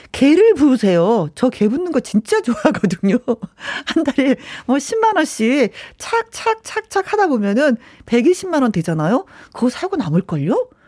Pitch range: 190-295 Hz